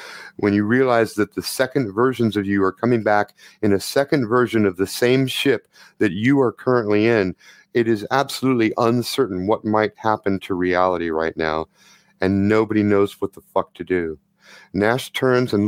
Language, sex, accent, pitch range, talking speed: English, male, American, 100-130 Hz, 180 wpm